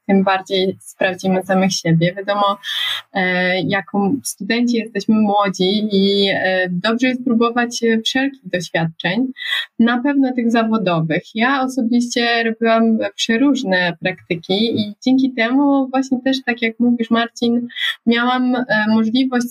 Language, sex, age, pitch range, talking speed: Polish, female, 20-39, 195-245 Hz, 110 wpm